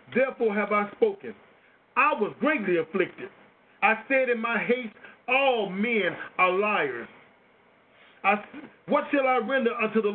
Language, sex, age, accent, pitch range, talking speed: English, male, 50-69, American, 185-225 Hz, 135 wpm